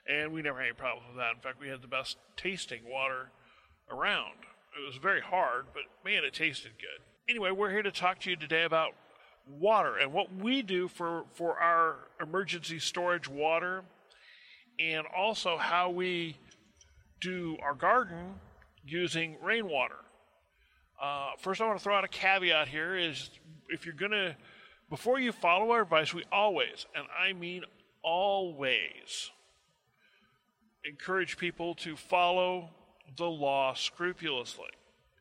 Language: English